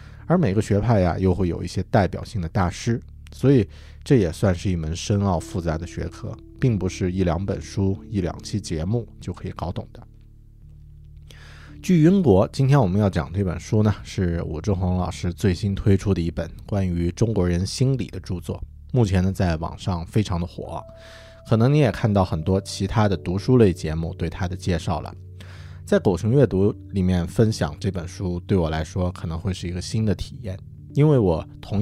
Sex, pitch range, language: male, 85-105 Hz, Chinese